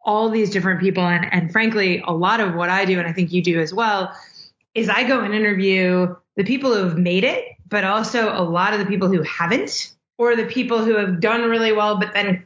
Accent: American